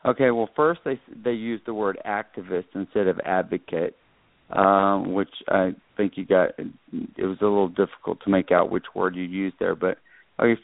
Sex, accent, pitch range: male, American, 100-120 Hz